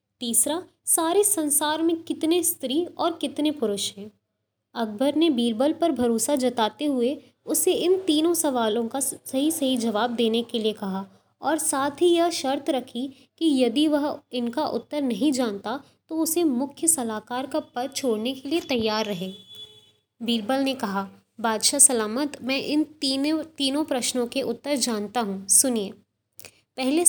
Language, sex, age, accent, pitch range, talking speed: Hindi, female, 20-39, native, 235-310 Hz, 155 wpm